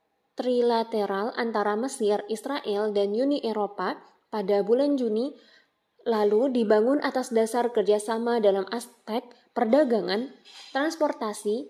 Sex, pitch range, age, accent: female, 215-250 Hz, 20-39, native